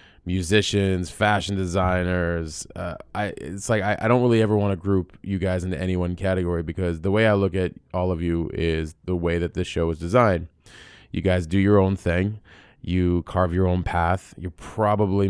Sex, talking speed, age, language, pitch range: male, 200 wpm, 20-39, English, 85-100 Hz